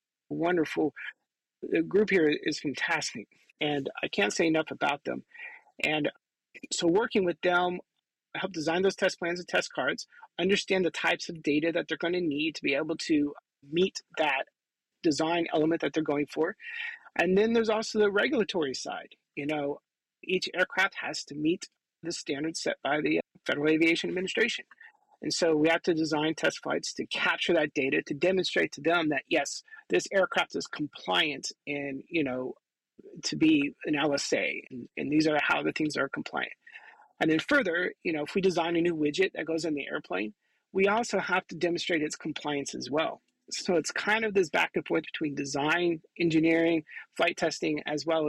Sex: male